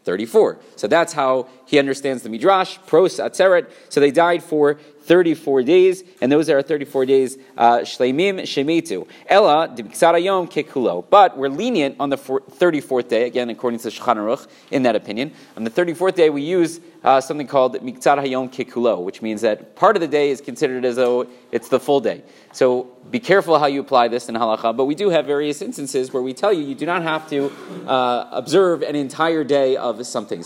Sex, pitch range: male, 130-165 Hz